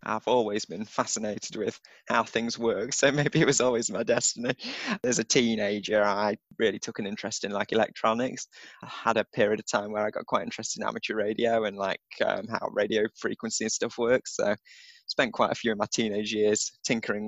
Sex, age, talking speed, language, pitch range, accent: male, 20-39, 210 wpm, English, 105-125 Hz, British